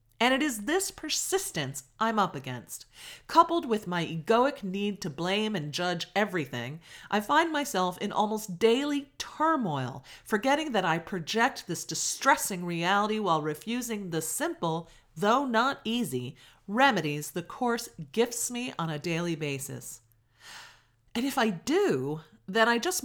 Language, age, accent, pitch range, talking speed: English, 40-59, American, 145-225 Hz, 145 wpm